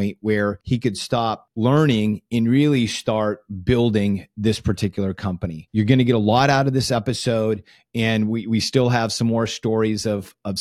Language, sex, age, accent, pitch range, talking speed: English, male, 30-49, American, 100-125 Hz, 185 wpm